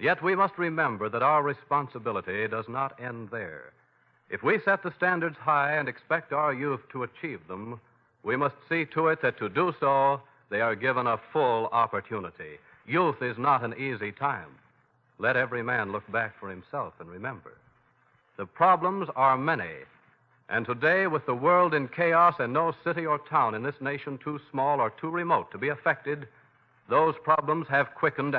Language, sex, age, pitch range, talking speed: English, male, 60-79, 130-170 Hz, 180 wpm